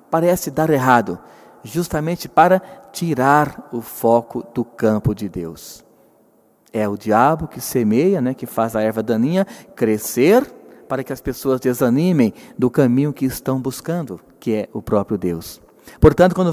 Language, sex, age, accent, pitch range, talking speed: Portuguese, male, 40-59, Brazilian, 120-175 Hz, 150 wpm